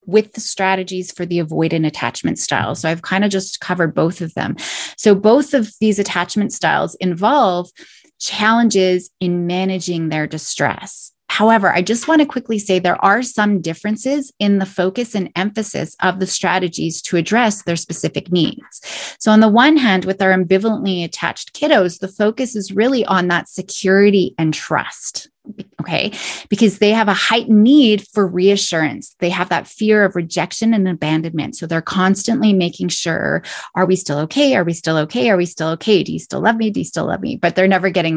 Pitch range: 175-215 Hz